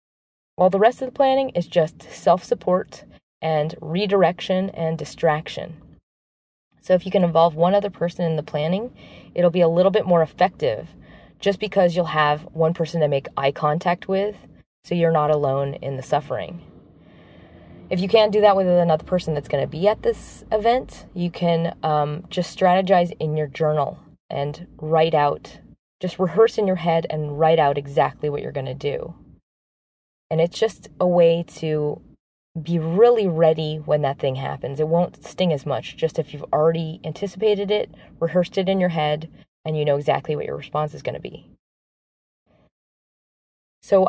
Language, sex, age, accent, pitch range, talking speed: English, female, 20-39, American, 150-185 Hz, 175 wpm